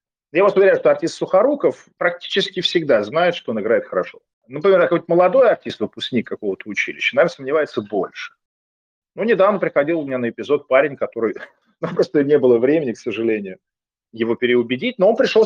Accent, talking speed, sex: native, 170 wpm, male